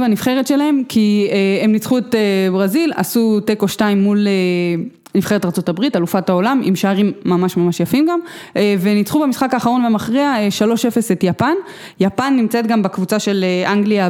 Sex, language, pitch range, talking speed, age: female, English, 180-220 Hz, 150 wpm, 20-39